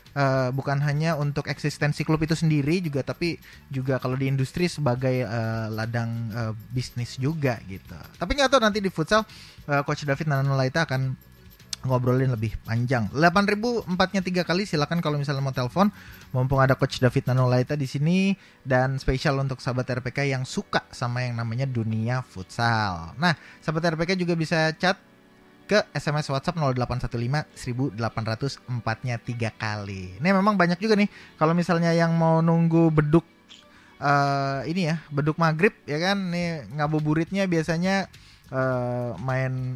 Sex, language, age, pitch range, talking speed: male, Indonesian, 20-39, 120-165 Hz, 145 wpm